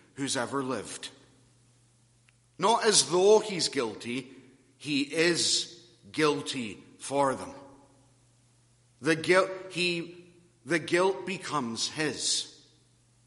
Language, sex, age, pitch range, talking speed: English, male, 50-69, 120-160 Hz, 80 wpm